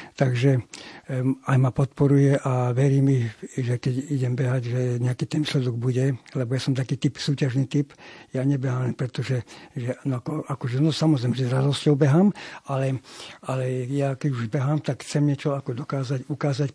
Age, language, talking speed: 60-79, Slovak, 165 wpm